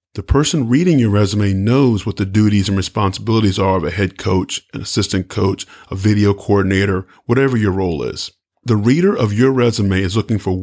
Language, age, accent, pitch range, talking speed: English, 40-59, American, 100-125 Hz, 190 wpm